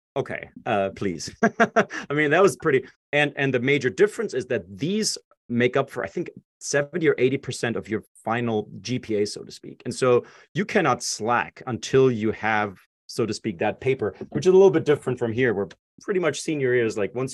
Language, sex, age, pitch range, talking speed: English, male, 30-49, 105-135 Hz, 205 wpm